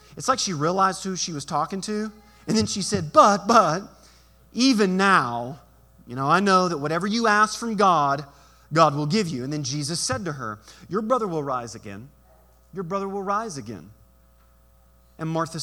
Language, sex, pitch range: English, male, 125-195 Hz